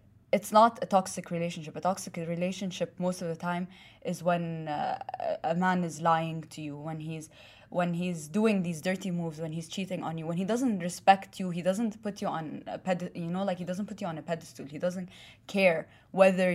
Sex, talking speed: female, 220 wpm